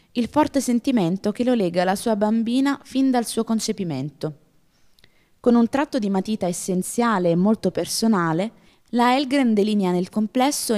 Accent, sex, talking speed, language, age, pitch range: native, female, 150 wpm, Italian, 20-39, 175-230 Hz